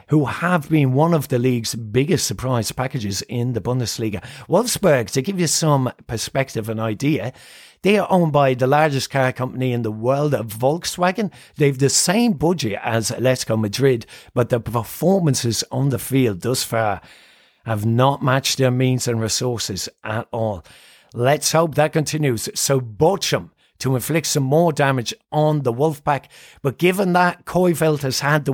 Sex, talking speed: male, 170 wpm